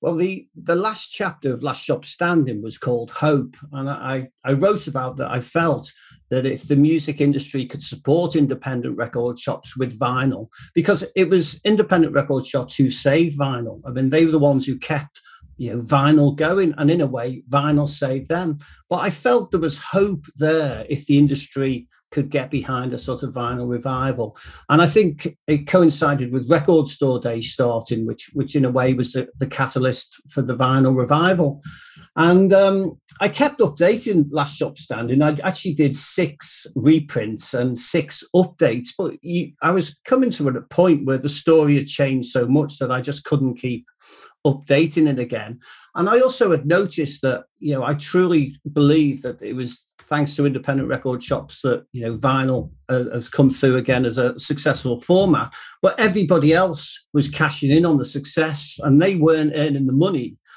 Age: 50-69